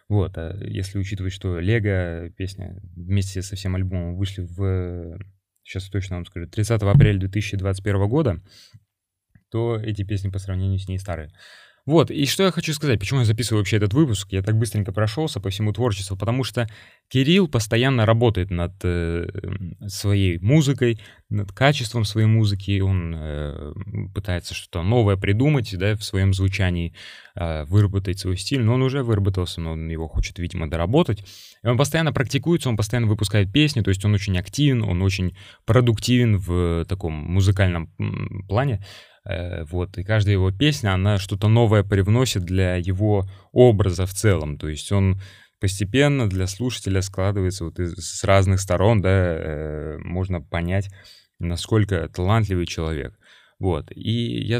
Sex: male